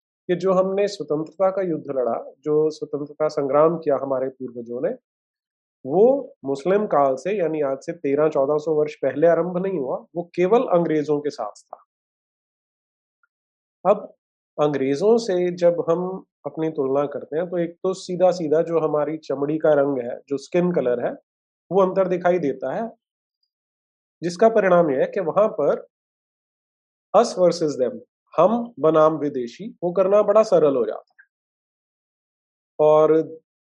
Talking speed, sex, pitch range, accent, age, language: 120 wpm, male, 145-190 Hz, Indian, 30-49, English